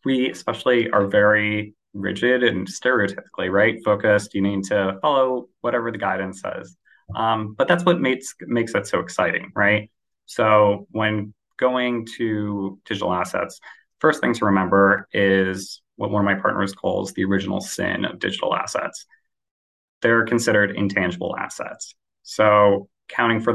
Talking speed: 145 wpm